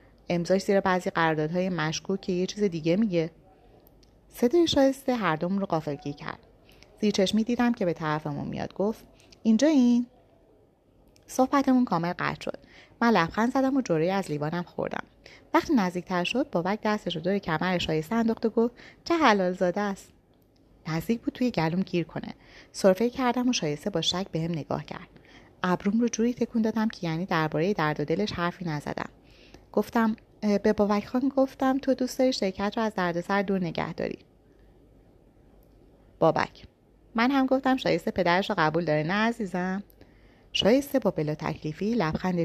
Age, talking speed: 30-49, 160 wpm